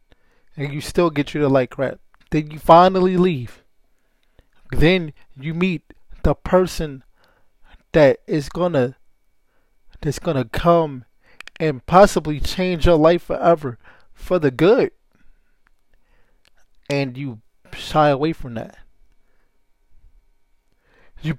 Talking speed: 110 wpm